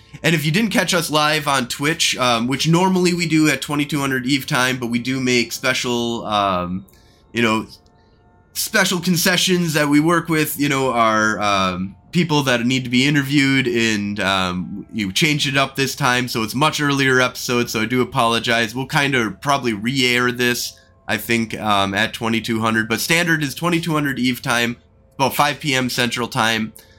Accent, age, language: American, 20-39, English